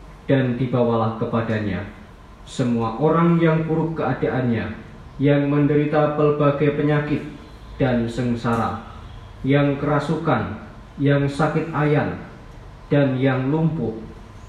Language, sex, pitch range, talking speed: Indonesian, male, 105-140 Hz, 90 wpm